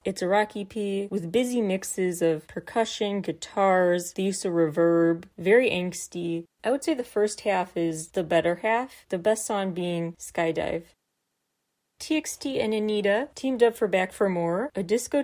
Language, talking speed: English, 165 wpm